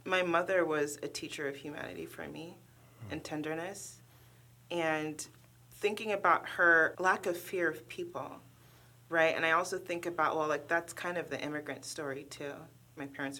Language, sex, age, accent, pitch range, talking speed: English, female, 30-49, American, 135-165 Hz, 165 wpm